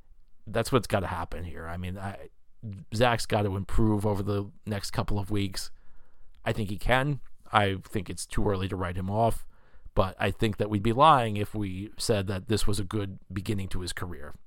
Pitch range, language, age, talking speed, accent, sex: 95-115 Hz, English, 40-59, 210 wpm, American, male